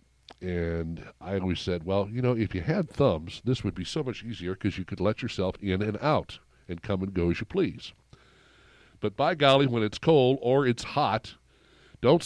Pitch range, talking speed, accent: 95-125 Hz, 205 wpm, American